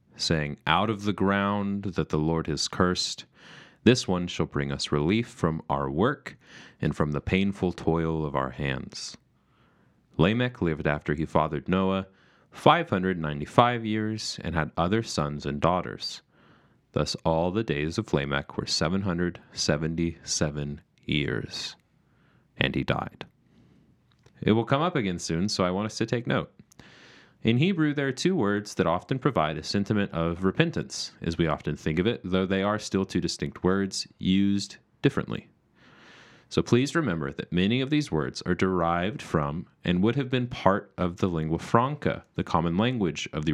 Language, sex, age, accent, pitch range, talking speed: English, male, 30-49, American, 80-110 Hz, 165 wpm